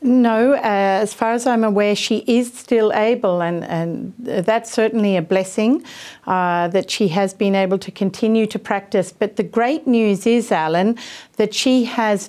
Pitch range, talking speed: 185-220 Hz, 175 wpm